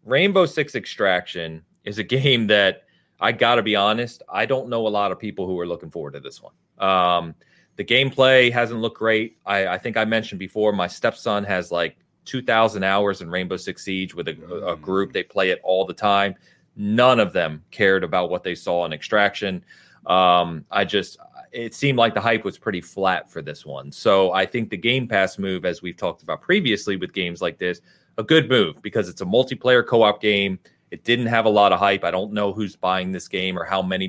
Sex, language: male, English